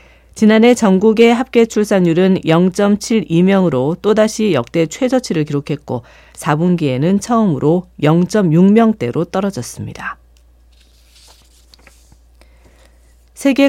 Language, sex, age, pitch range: Korean, female, 40-59, 140-210 Hz